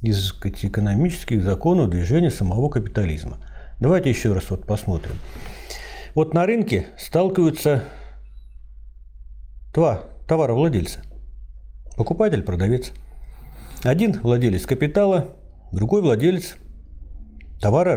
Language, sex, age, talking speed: Russian, male, 50-69, 80 wpm